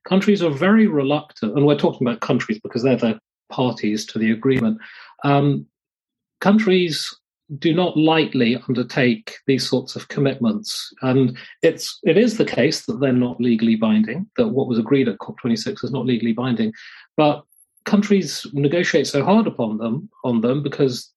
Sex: male